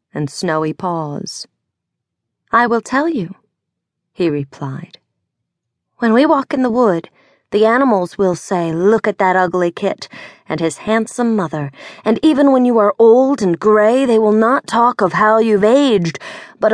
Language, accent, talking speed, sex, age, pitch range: English, American, 160 wpm, female, 30-49, 165-225 Hz